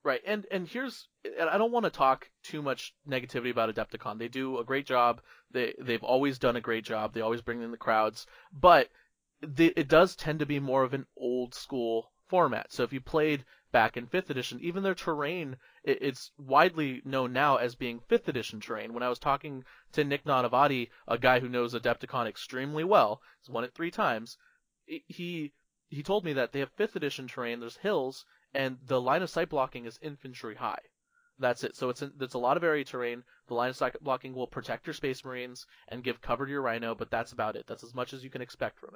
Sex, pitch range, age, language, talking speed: male, 120-145 Hz, 30-49, English, 225 wpm